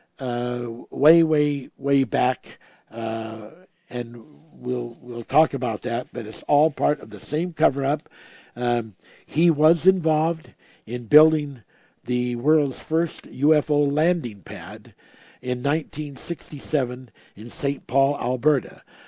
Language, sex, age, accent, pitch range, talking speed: English, male, 60-79, American, 120-150 Hz, 125 wpm